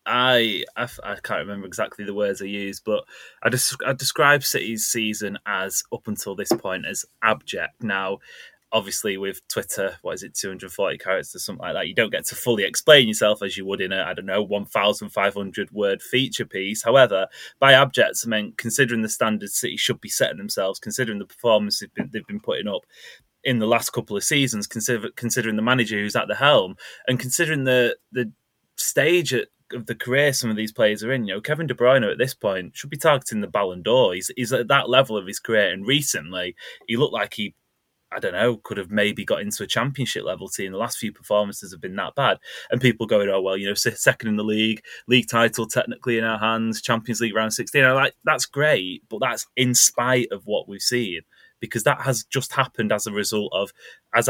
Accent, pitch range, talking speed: British, 105-125 Hz, 220 wpm